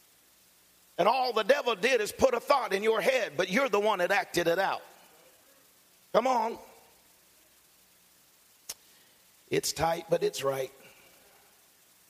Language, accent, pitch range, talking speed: English, American, 140-185 Hz, 135 wpm